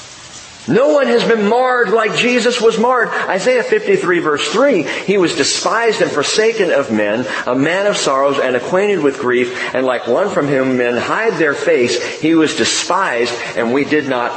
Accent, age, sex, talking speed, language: American, 40-59, male, 185 wpm, English